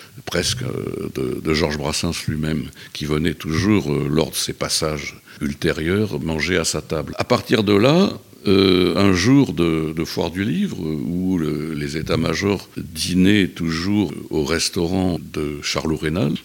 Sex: male